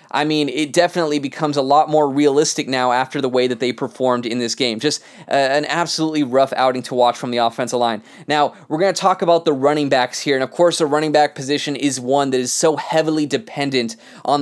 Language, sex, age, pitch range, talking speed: English, male, 20-39, 130-155 Hz, 235 wpm